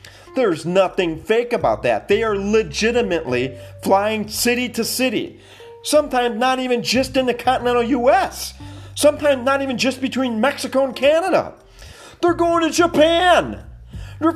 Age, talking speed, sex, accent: 40-59, 140 wpm, male, American